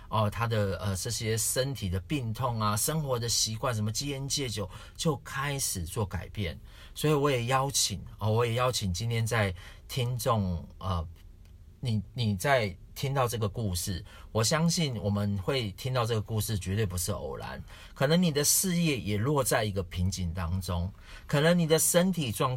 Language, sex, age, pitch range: Chinese, male, 40-59, 95-130 Hz